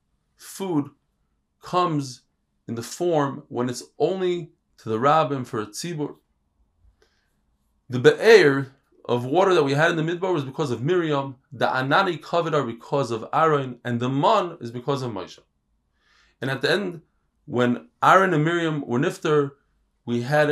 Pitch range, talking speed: 120-170 Hz, 155 wpm